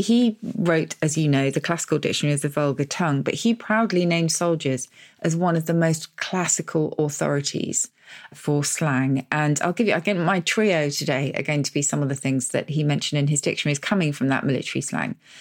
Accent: British